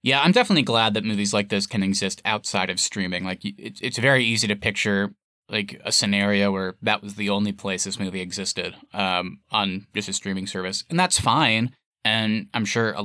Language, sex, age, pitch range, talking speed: English, male, 20-39, 100-120 Hz, 205 wpm